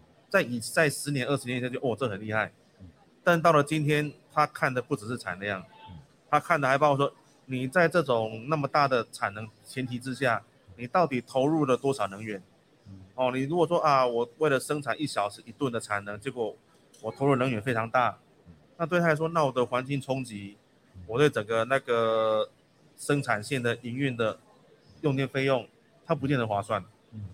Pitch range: 110-145 Hz